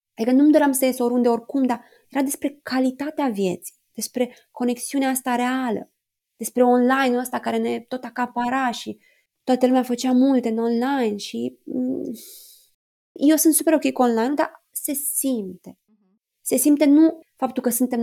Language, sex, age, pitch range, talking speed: Romanian, female, 20-39, 230-280 Hz, 155 wpm